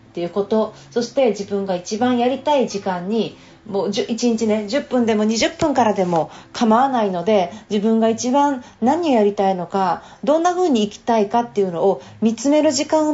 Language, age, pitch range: Japanese, 40-59, 195-255 Hz